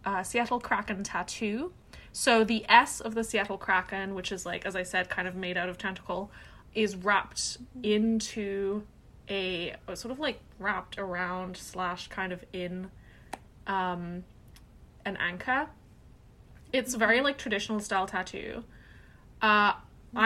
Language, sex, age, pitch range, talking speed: English, female, 20-39, 185-230 Hz, 135 wpm